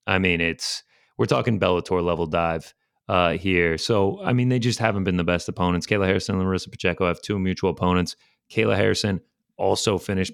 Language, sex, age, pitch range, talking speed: English, male, 30-49, 90-110 Hz, 190 wpm